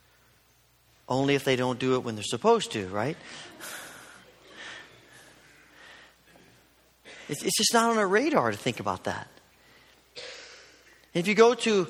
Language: English